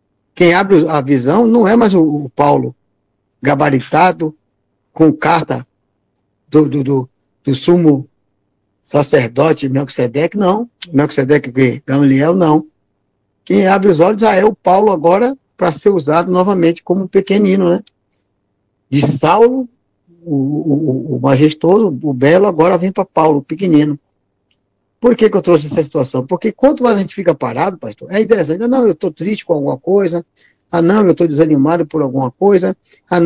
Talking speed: 160 wpm